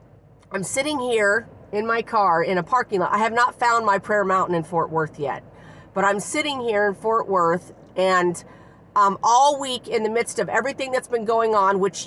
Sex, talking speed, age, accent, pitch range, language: female, 210 wpm, 40-59, American, 160-210 Hz, English